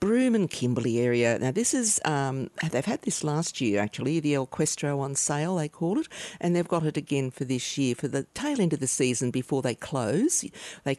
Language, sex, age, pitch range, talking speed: English, female, 50-69, 130-165 Hz, 225 wpm